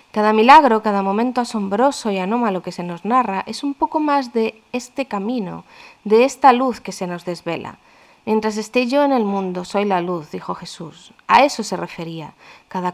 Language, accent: Spanish, Spanish